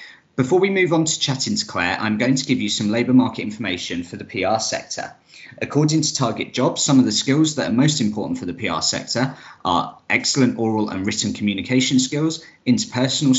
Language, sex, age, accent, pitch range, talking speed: English, male, 20-39, British, 105-130 Hz, 200 wpm